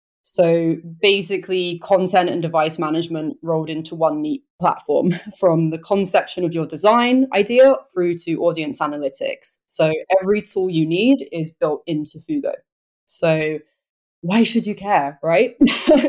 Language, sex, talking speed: English, female, 140 wpm